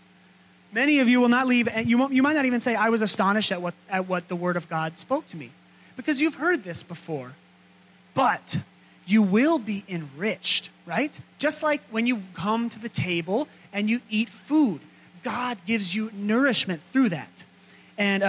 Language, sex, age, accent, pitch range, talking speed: English, male, 30-49, American, 170-225 Hz, 175 wpm